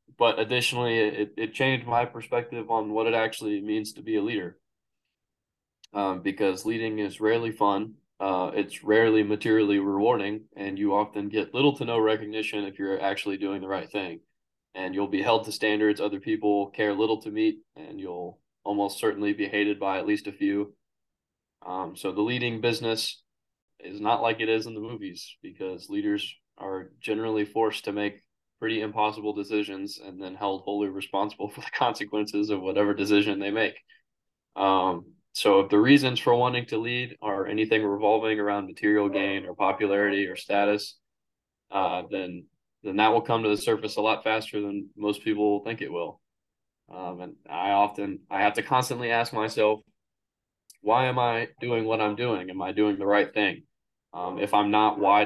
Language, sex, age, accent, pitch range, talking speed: English, male, 20-39, American, 100-110 Hz, 180 wpm